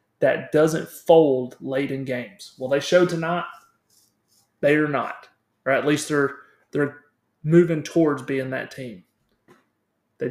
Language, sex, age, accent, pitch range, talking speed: English, male, 30-49, American, 135-160 Hz, 140 wpm